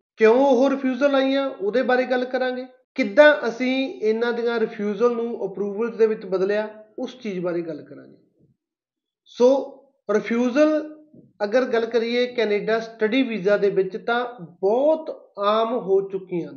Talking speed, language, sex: 140 wpm, Punjabi, male